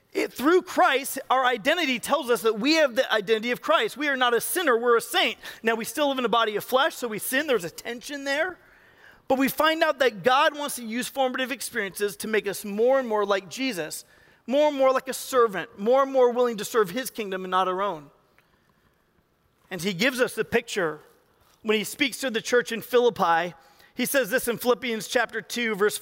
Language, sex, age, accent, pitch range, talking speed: English, male, 40-59, American, 215-265 Hz, 225 wpm